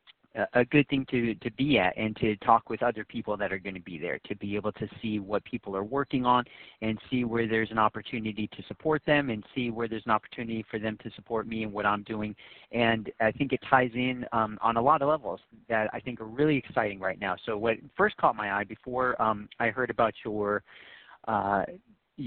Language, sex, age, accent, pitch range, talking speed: English, male, 40-59, American, 110-130 Hz, 230 wpm